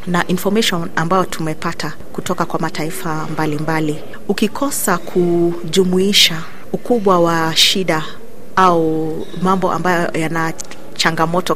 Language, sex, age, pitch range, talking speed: Swahili, female, 30-49, 165-195 Hz, 100 wpm